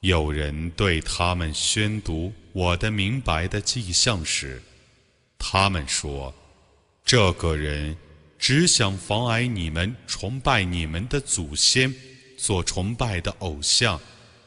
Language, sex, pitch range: Chinese, male, 80-105 Hz